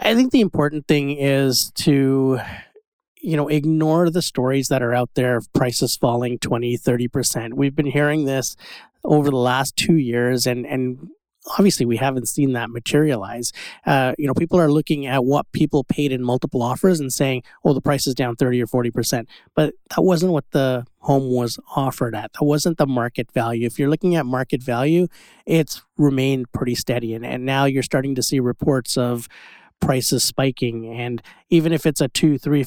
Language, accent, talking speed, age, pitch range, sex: English, American, 190 wpm, 30-49, 125-150 Hz, male